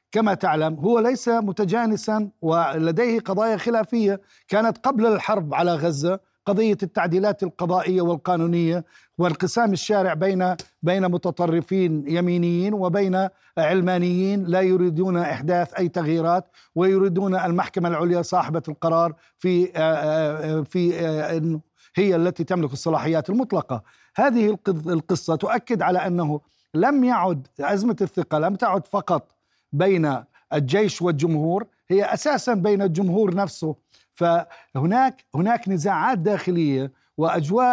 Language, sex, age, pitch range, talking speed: Arabic, male, 50-69, 165-200 Hz, 105 wpm